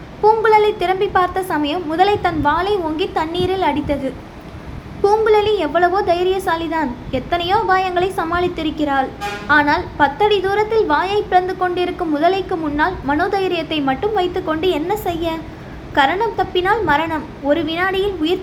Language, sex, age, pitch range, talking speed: Tamil, female, 20-39, 310-385 Hz, 115 wpm